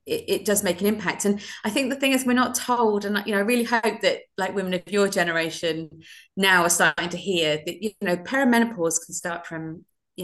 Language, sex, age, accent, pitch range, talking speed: English, female, 30-49, British, 170-205 Hz, 235 wpm